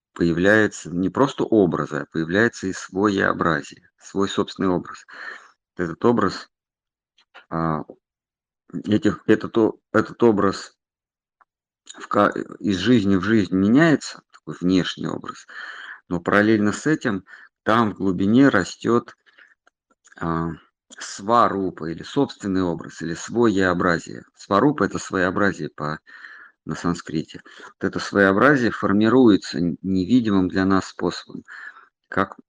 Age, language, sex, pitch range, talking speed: 50-69, Russian, male, 90-105 Hz, 105 wpm